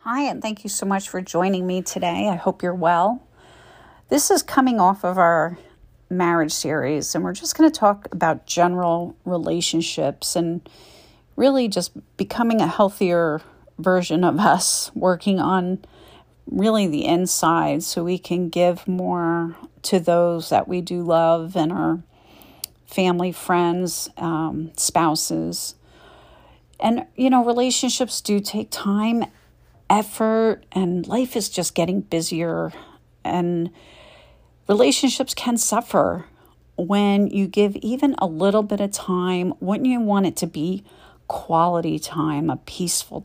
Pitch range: 170-210 Hz